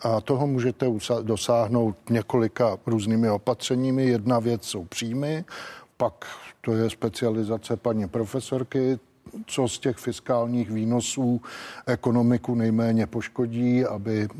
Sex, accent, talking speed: male, native, 110 wpm